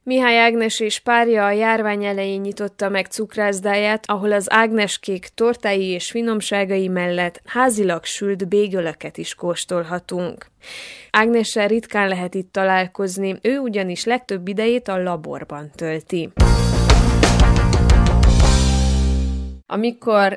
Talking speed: 105 wpm